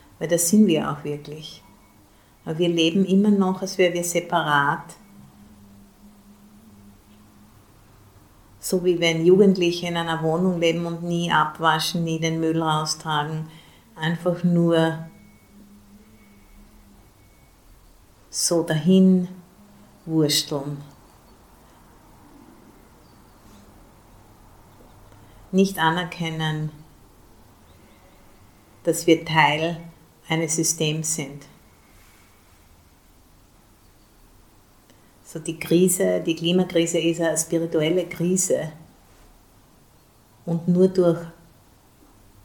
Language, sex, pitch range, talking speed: English, female, 100-165 Hz, 80 wpm